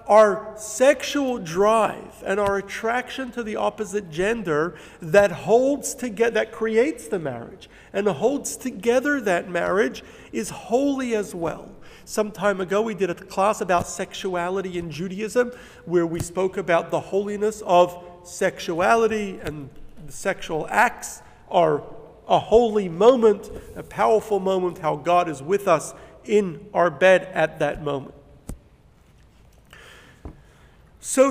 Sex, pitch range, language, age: male, 175-240 Hz, English, 50-69